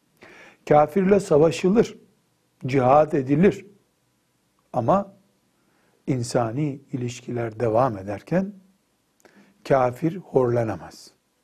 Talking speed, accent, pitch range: 60 wpm, native, 125-170 Hz